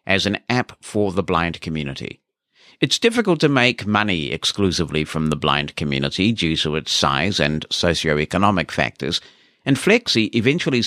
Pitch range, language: 80-110 Hz, English